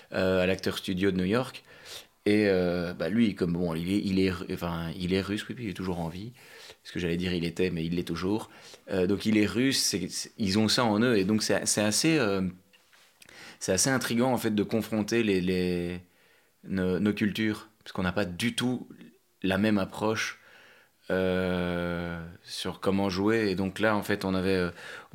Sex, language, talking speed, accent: male, French, 210 wpm, French